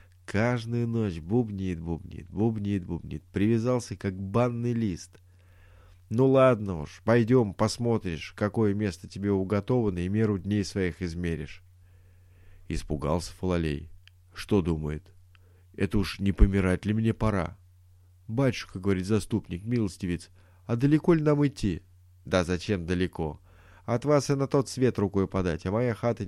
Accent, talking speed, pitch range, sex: native, 130 wpm, 90-115 Hz, male